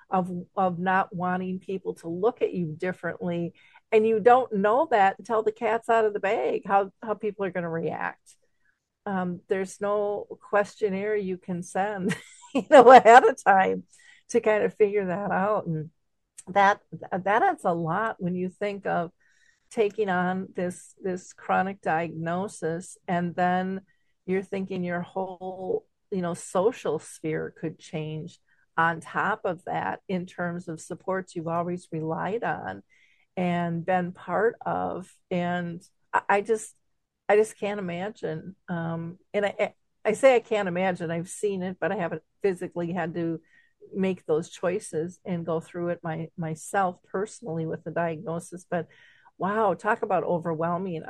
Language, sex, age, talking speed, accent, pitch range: English, female, 50-69, 155 wpm, American, 170-205 Hz